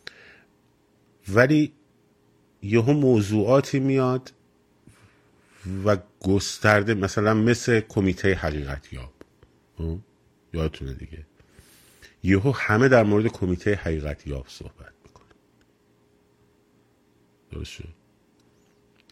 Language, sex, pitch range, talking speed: Persian, male, 80-110 Hz, 70 wpm